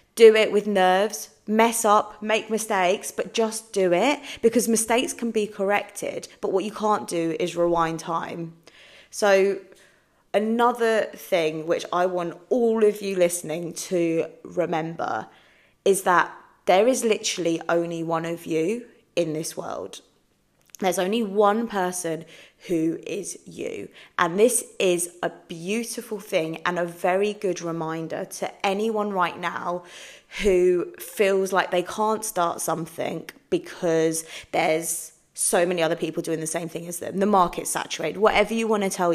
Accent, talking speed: British, 150 wpm